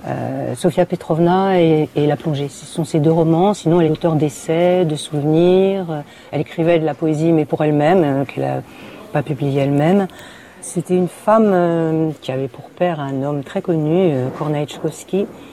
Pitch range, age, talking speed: 145-180 Hz, 50-69, 185 wpm